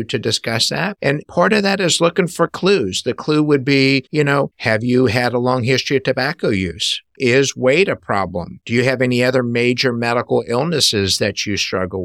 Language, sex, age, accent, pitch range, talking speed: English, male, 50-69, American, 105-130 Hz, 205 wpm